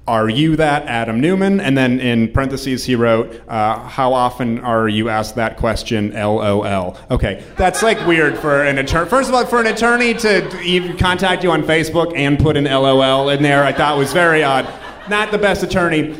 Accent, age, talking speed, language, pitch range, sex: American, 30-49, 220 wpm, English, 120-180 Hz, male